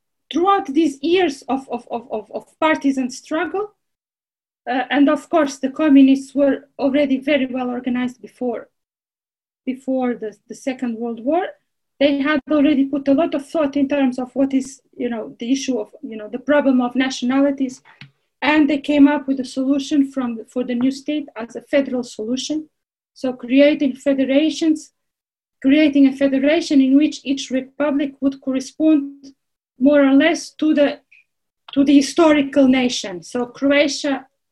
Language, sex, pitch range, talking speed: English, female, 250-290 Hz, 155 wpm